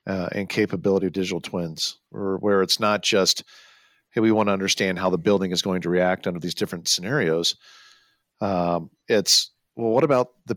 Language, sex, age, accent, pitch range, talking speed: English, male, 50-69, American, 90-105 Hz, 180 wpm